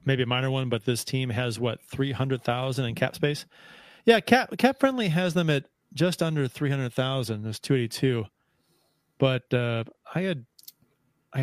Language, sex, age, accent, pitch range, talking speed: English, male, 30-49, American, 125-155 Hz, 190 wpm